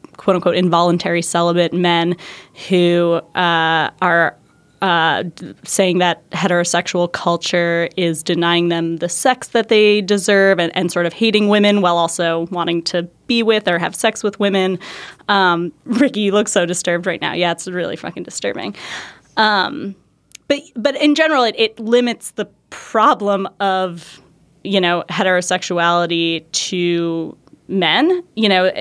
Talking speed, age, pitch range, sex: 140 wpm, 20-39, 170-200 Hz, female